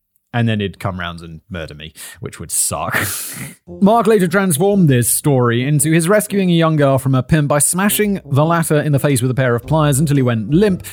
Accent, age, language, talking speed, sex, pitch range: British, 30-49, English, 225 wpm, male, 110-150 Hz